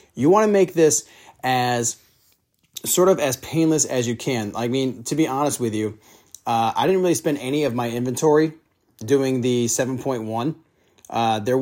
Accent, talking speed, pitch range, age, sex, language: American, 185 wpm, 115-145 Hz, 30-49, male, English